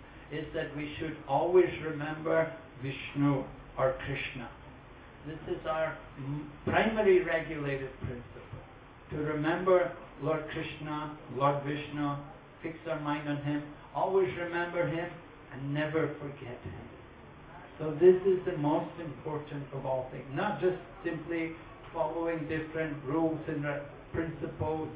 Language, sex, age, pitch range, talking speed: English, male, 60-79, 140-165 Hz, 120 wpm